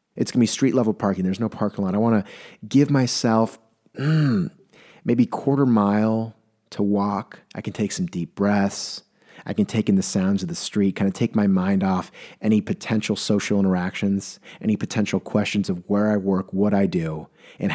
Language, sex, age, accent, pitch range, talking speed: English, male, 30-49, American, 100-120 Hz, 195 wpm